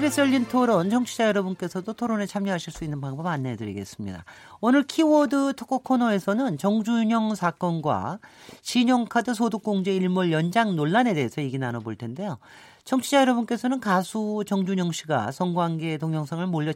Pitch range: 135-215 Hz